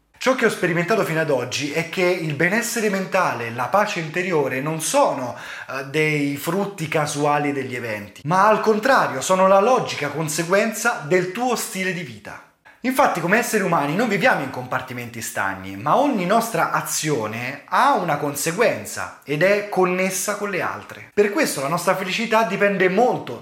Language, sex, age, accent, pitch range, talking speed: Italian, male, 20-39, native, 145-205 Hz, 160 wpm